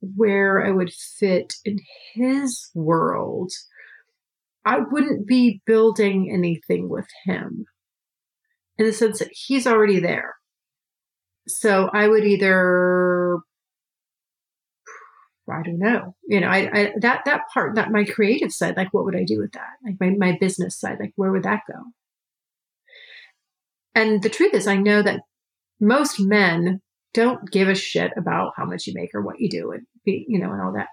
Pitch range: 195-245 Hz